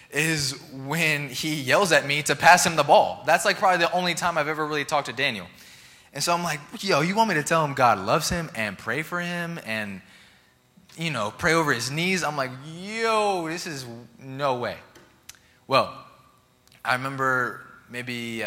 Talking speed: 195 wpm